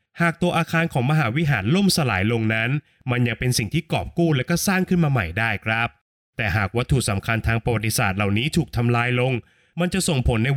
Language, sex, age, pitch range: Thai, male, 20-39, 110-150 Hz